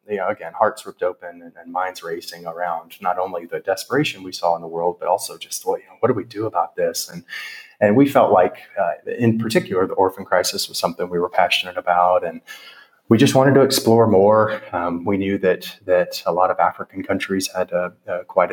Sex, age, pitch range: male, 30-49, 85-115 Hz